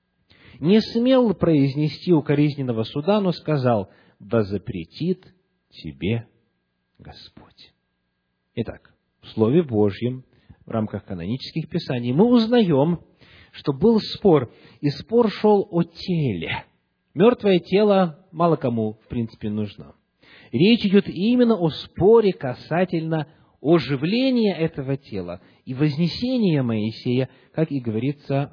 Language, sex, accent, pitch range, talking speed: Russian, male, native, 115-175 Hz, 105 wpm